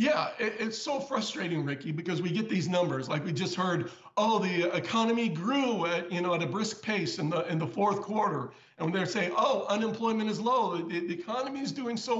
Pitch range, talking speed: 175-205 Hz, 220 wpm